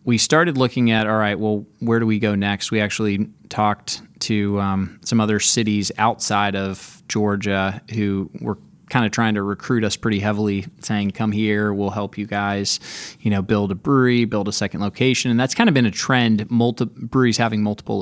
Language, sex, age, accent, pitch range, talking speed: English, male, 20-39, American, 100-115 Hz, 200 wpm